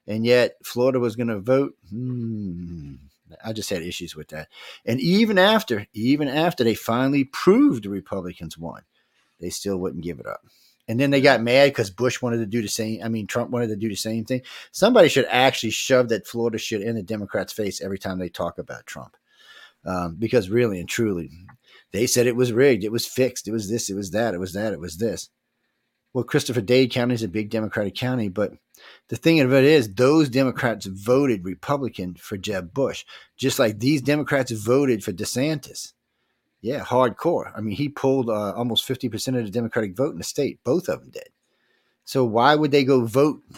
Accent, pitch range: American, 105-135 Hz